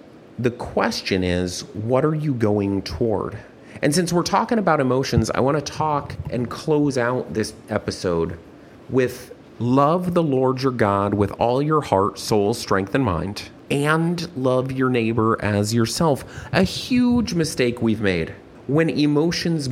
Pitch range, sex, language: 115-150 Hz, male, English